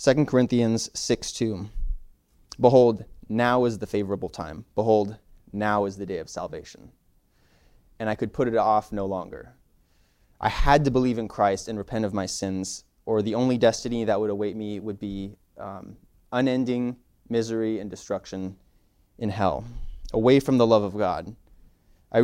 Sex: male